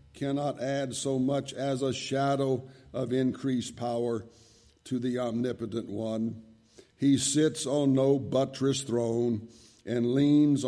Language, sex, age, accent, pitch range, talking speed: English, male, 60-79, American, 115-135 Hz, 125 wpm